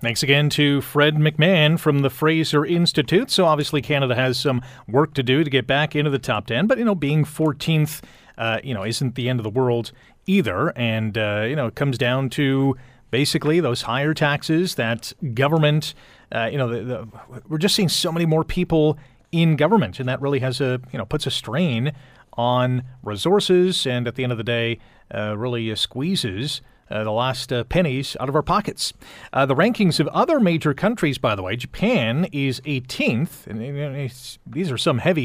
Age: 30-49